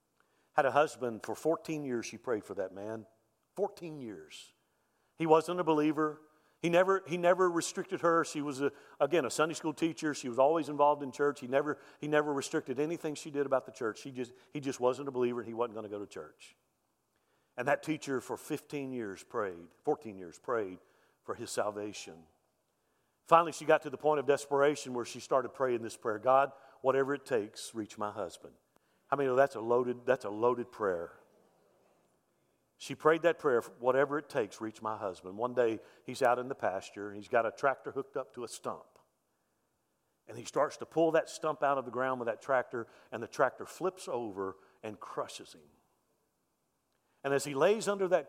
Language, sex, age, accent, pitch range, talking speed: English, male, 50-69, American, 120-155 Hz, 190 wpm